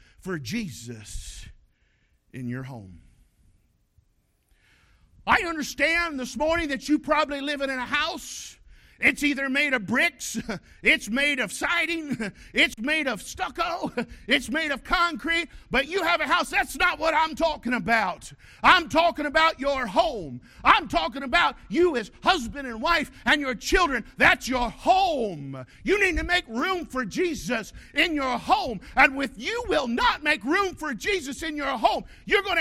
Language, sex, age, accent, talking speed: English, male, 50-69, American, 180 wpm